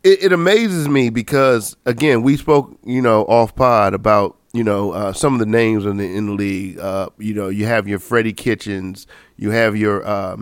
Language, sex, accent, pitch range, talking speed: English, male, American, 110-140 Hz, 200 wpm